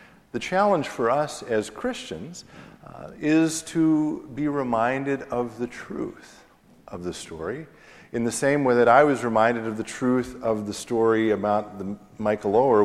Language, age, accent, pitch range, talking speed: English, 50-69, American, 105-135 Hz, 160 wpm